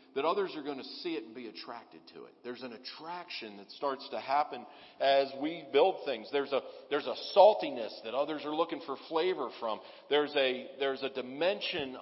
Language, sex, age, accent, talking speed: English, male, 50-69, American, 200 wpm